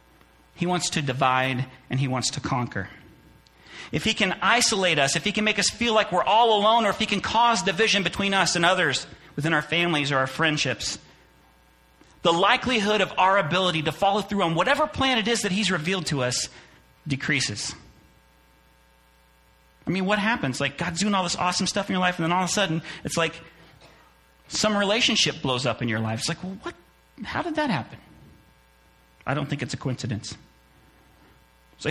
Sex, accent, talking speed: male, American, 195 wpm